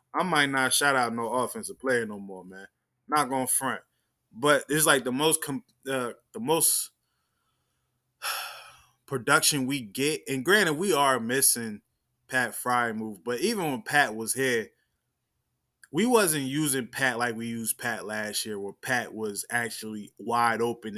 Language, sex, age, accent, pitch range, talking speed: English, male, 20-39, American, 115-145 Hz, 165 wpm